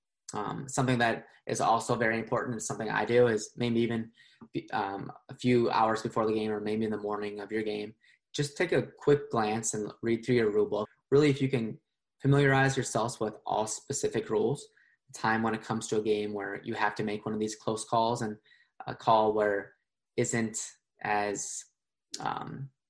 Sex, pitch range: male, 105-125 Hz